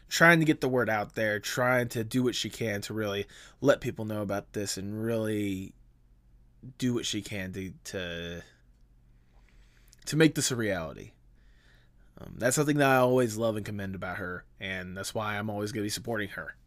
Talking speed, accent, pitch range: 195 wpm, American, 90-135 Hz